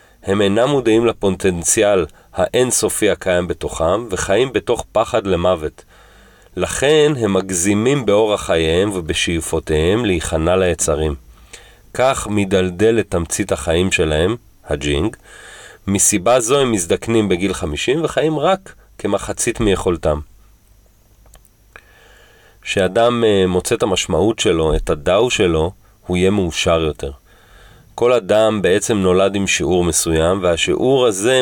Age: 40-59